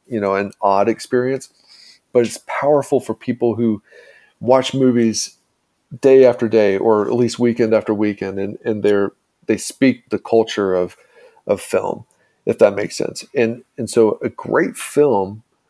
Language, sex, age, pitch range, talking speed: English, male, 40-59, 105-120 Hz, 160 wpm